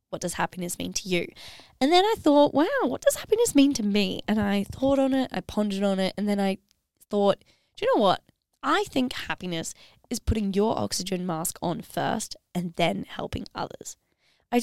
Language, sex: English, female